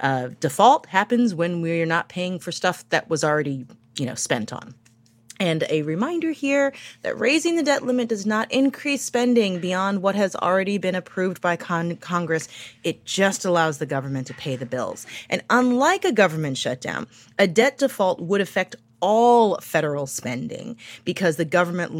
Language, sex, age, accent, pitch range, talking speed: English, female, 30-49, American, 155-220 Hz, 170 wpm